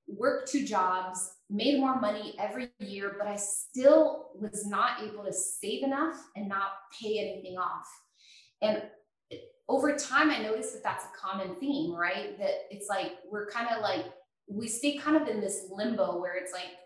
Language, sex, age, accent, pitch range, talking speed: English, female, 20-39, American, 190-230 Hz, 180 wpm